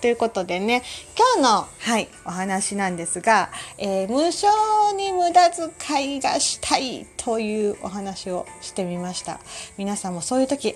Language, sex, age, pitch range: Japanese, female, 40-59, 210-280 Hz